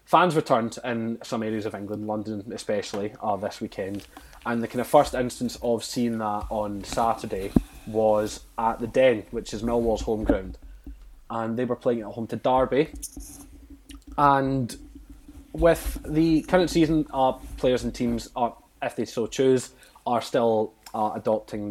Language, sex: English, male